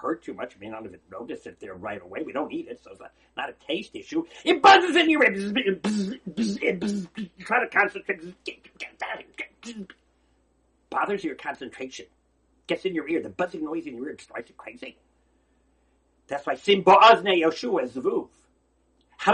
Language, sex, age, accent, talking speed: English, male, 50-69, American, 165 wpm